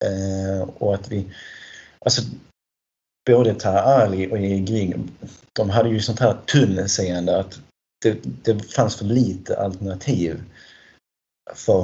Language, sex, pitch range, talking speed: Swedish, male, 95-120 Hz, 125 wpm